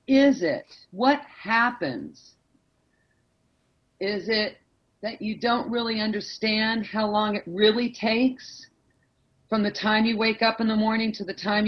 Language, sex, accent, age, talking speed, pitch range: English, female, American, 40-59, 145 wpm, 185-235 Hz